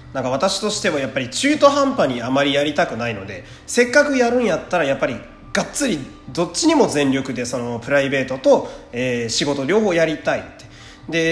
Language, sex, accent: Japanese, male, native